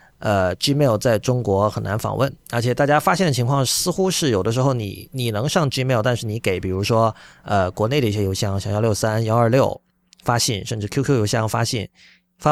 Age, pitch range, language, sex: 30-49, 105-145 Hz, Chinese, male